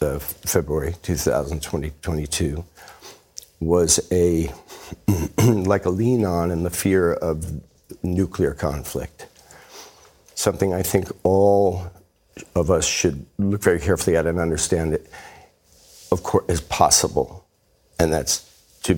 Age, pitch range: 60-79, 85-100 Hz